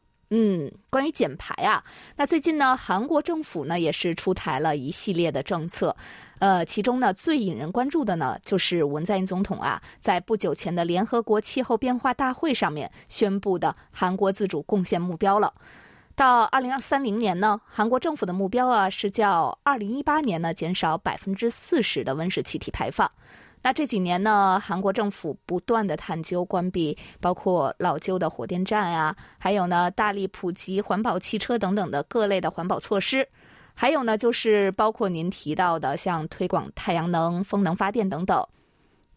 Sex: female